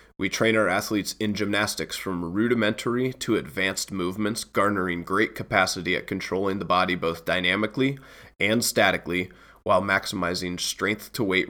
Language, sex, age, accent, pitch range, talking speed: English, male, 20-39, American, 90-110 Hz, 130 wpm